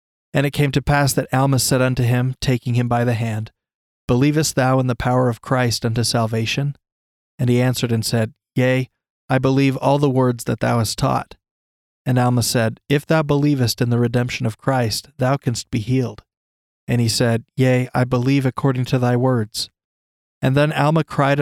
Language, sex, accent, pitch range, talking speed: English, male, American, 115-140 Hz, 190 wpm